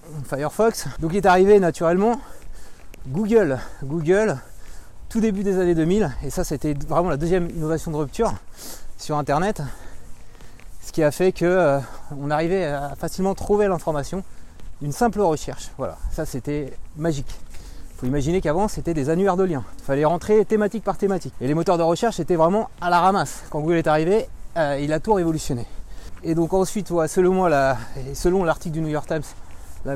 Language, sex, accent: French, male, French